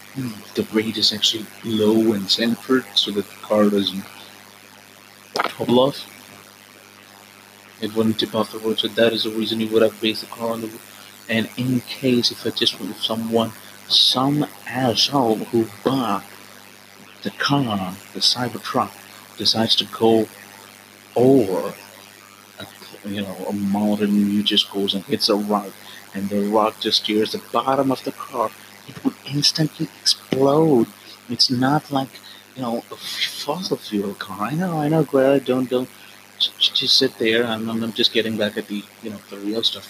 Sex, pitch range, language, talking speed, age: male, 100-115 Hz, English, 170 wpm, 30-49